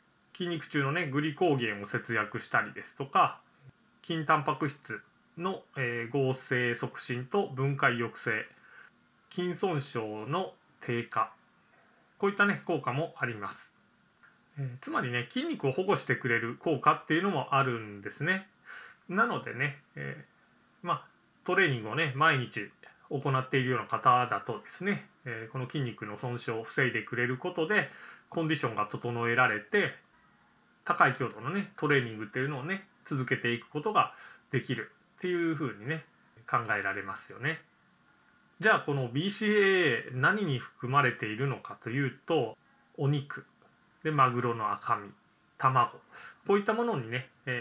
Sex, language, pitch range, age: male, Japanese, 120-165 Hz, 20-39